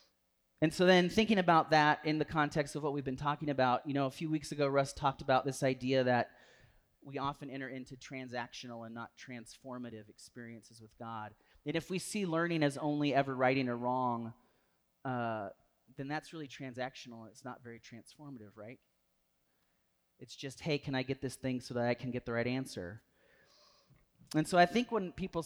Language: English